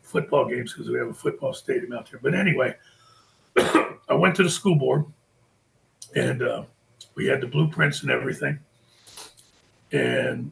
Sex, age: male, 50-69